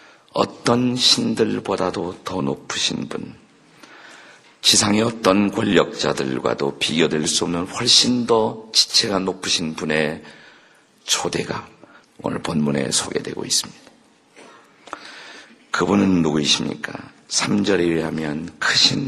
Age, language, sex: 50-69, Korean, male